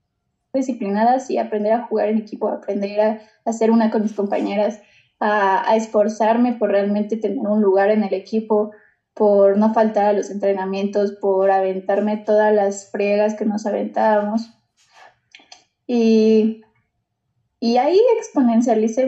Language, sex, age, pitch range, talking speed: Spanish, female, 10-29, 205-230 Hz, 135 wpm